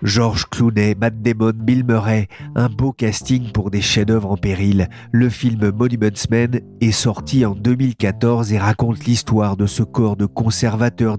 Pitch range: 105-120 Hz